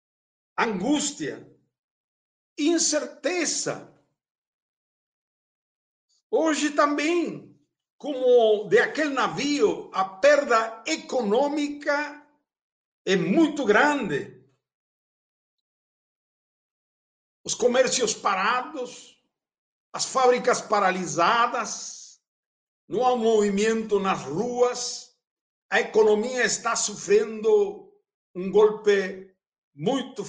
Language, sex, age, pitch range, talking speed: Portuguese, male, 60-79, 200-285 Hz, 65 wpm